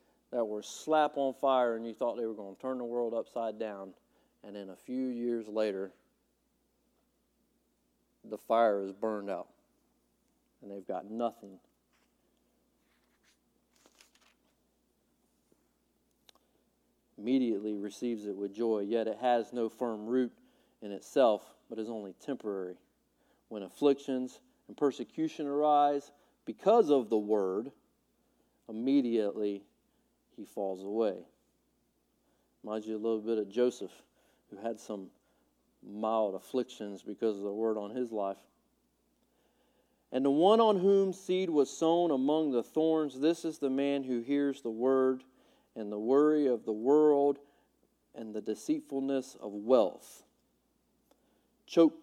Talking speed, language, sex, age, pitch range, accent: 130 wpm, English, male, 40-59, 105-135 Hz, American